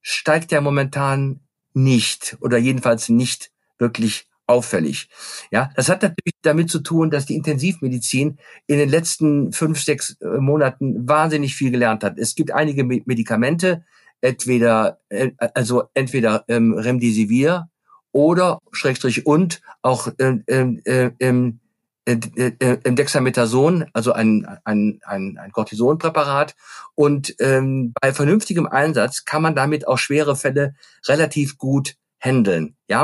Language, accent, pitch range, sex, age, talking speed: German, German, 125-150 Hz, male, 50-69, 120 wpm